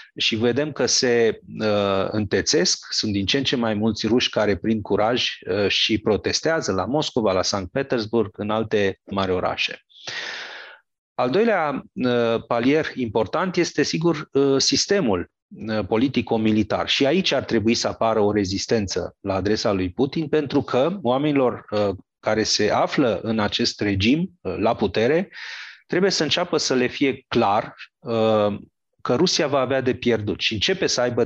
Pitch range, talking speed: 105-145 Hz, 160 wpm